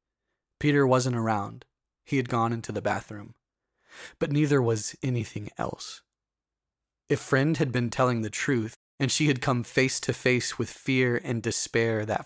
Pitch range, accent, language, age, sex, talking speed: 105-130 Hz, American, English, 30-49, male, 160 wpm